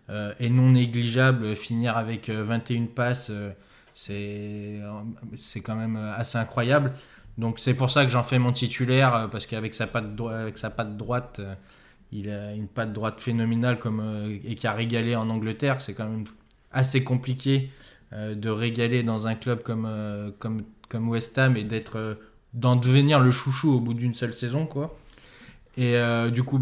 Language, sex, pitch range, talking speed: French, male, 110-130 Hz, 195 wpm